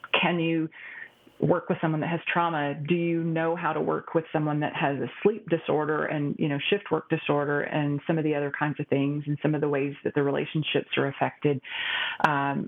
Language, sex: English, female